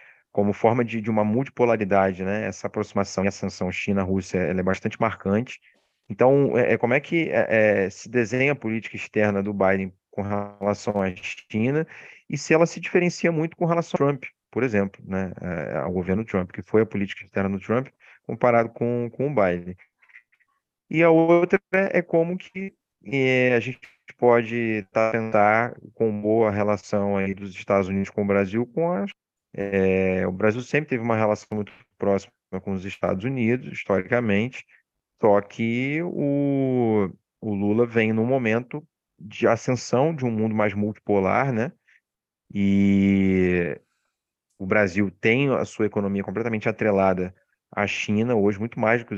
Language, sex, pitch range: Portuguese, male, 100-125 Hz